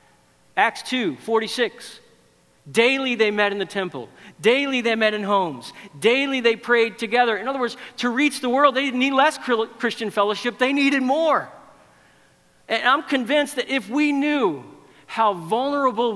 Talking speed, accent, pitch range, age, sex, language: 160 wpm, American, 135-220 Hz, 50-69, male, English